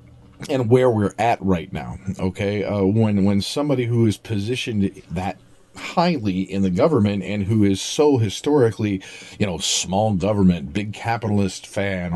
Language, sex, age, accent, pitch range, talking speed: English, male, 40-59, American, 95-115 Hz, 155 wpm